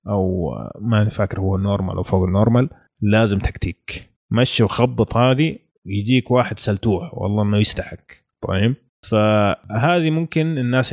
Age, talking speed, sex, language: 30-49, 135 wpm, male, Arabic